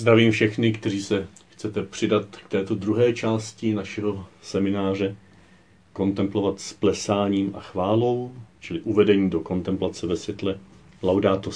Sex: male